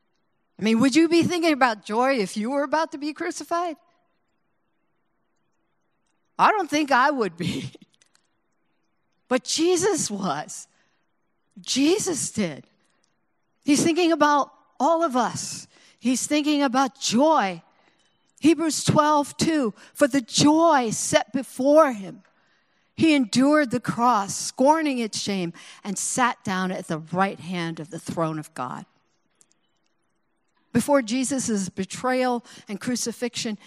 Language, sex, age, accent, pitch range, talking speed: English, female, 50-69, American, 185-265 Hz, 125 wpm